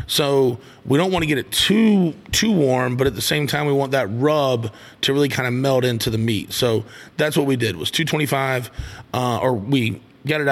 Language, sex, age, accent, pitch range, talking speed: English, male, 30-49, American, 125-150 Hz, 220 wpm